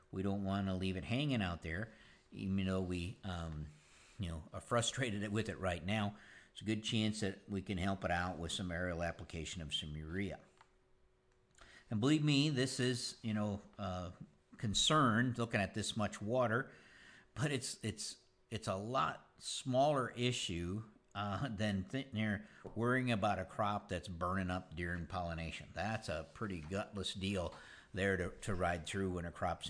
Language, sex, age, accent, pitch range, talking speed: English, male, 50-69, American, 95-115 Hz, 170 wpm